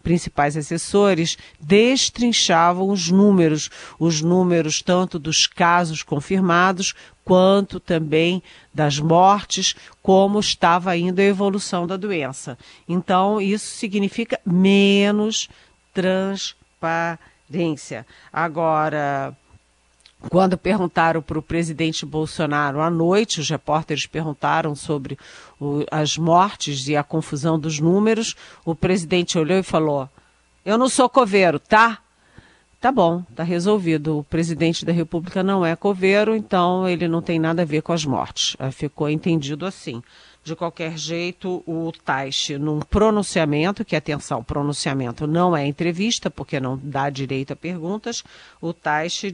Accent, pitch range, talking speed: Brazilian, 155-190 Hz, 125 wpm